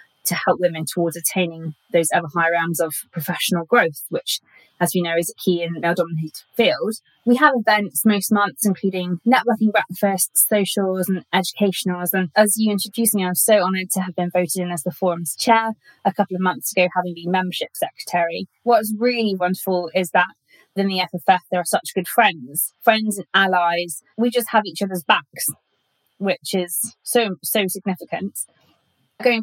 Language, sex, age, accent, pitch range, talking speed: English, female, 20-39, British, 175-205 Hz, 180 wpm